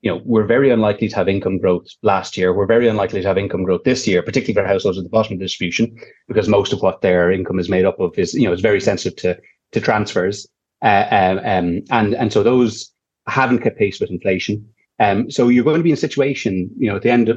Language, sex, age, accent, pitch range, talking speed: English, male, 30-49, Irish, 100-125 Hz, 260 wpm